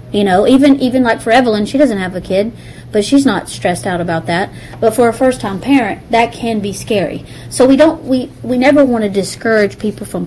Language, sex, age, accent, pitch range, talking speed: English, female, 40-59, American, 180-220 Hz, 230 wpm